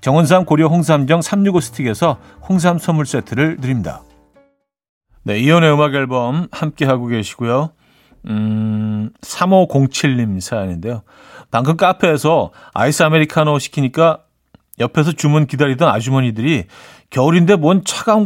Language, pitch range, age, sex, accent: Korean, 120-165 Hz, 40-59, male, native